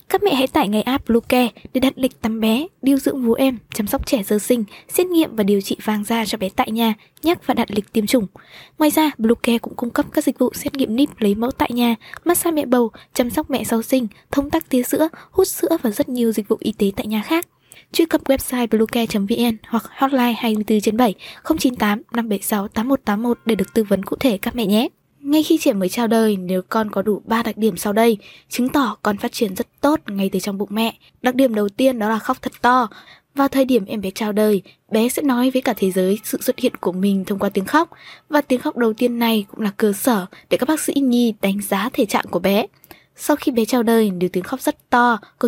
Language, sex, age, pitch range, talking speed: Vietnamese, female, 20-39, 215-270 Hz, 250 wpm